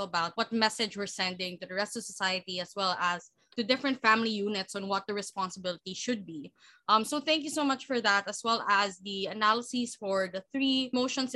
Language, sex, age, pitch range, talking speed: English, female, 20-39, 195-255 Hz, 210 wpm